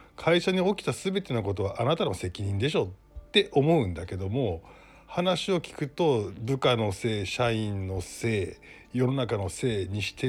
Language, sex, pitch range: Japanese, male, 100-145 Hz